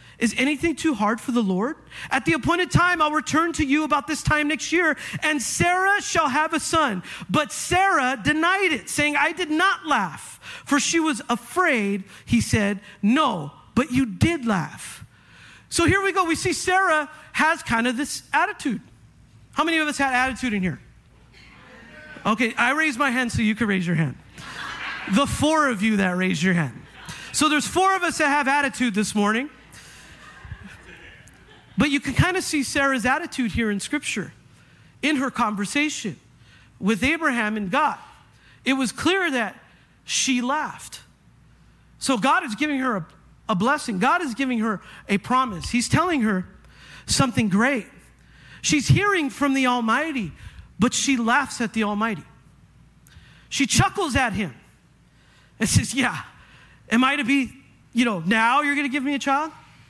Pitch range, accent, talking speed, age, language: 215-305 Hz, American, 170 wpm, 40-59, English